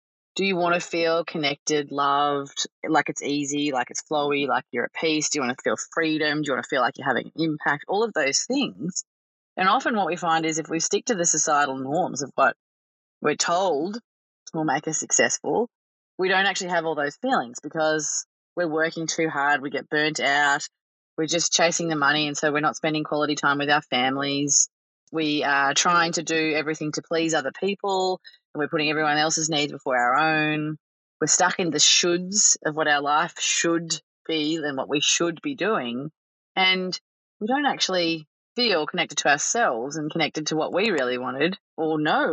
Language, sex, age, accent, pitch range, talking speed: English, female, 20-39, Australian, 145-170 Hz, 200 wpm